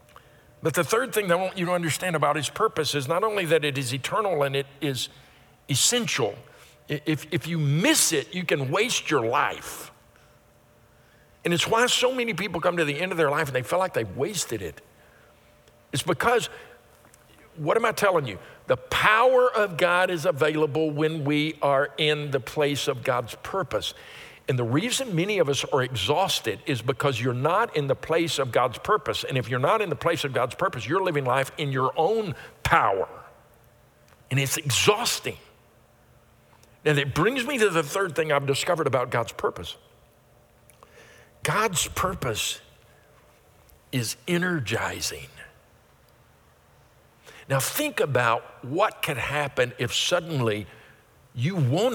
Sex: male